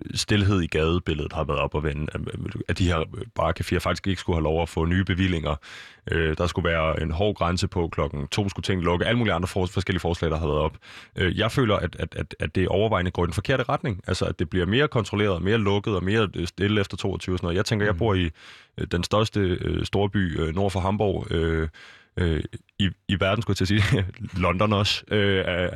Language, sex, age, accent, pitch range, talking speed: Danish, male, 20-39, native, 90-110 Hz, 210 wpm